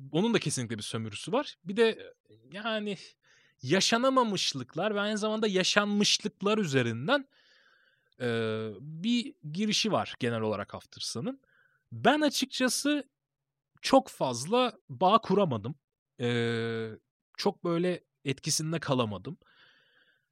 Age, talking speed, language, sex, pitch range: 30-49, 90 wpm, Turkish, male, 120-180 Hz